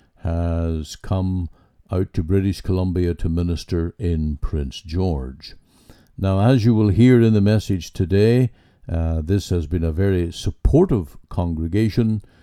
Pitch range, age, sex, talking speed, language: 85-100 Hz, 60-79, male, 135 wpm, English